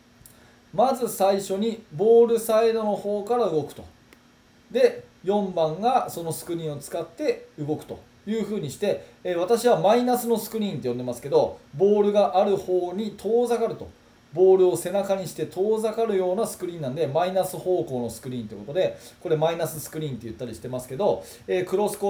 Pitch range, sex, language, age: 140-205 Hz, male, Japanese, 20-39